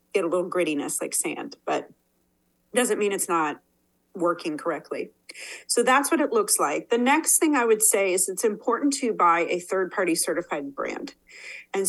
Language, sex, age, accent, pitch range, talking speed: English, female, 40-59, American, 180-270 Hz, 175 wpm